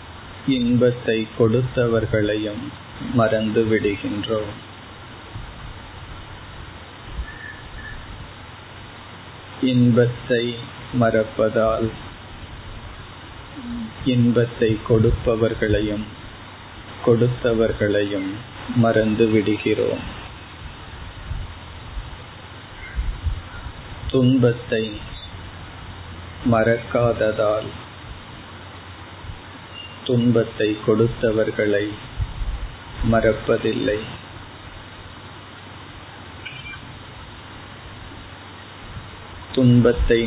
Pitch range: 100-115 Hz